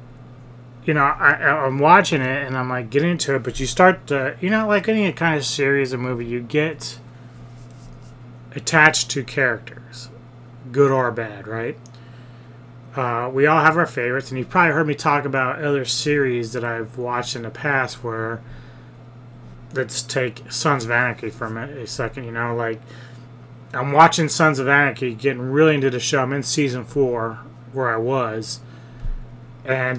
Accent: American